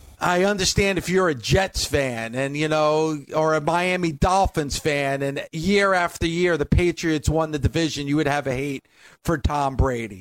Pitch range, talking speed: 155-210 Hz, 190 wpm